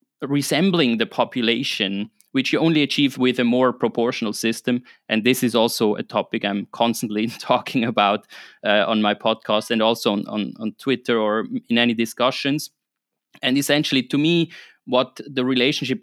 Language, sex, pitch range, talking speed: English, male, 115-150 Hz, 160 wpm